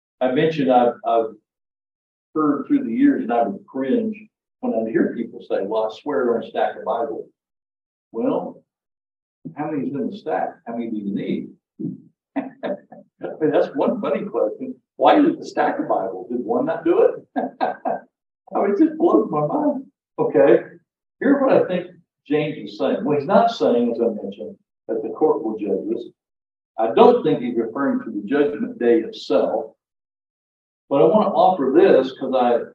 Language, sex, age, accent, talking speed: English, male, 60-79, American, 185 wpm